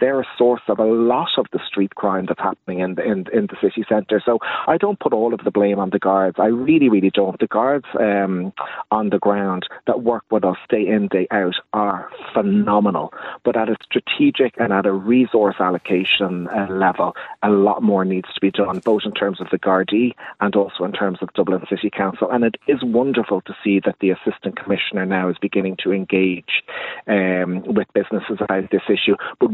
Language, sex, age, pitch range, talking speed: English, male, 30-49, 95-115 Hz, 205 wpm